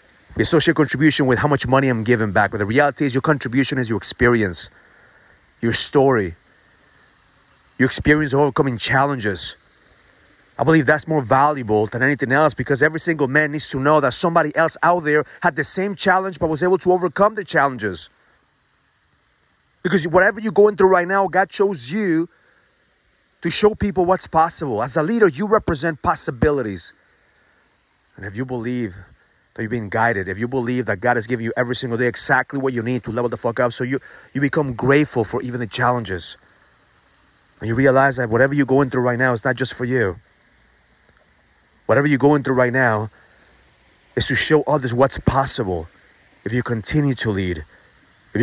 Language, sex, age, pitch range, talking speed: English, male, 30-49, 120-155 Hz, 180 wpm